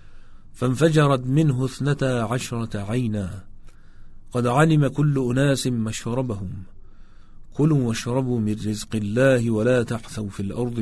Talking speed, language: 110 wpm, Persian